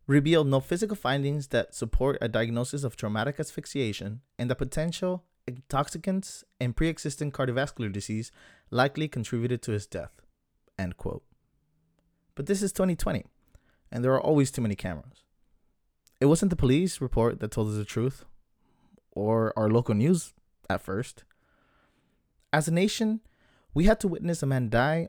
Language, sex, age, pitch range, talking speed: English, male, 20-39, 110-145 Hz, 150 wpm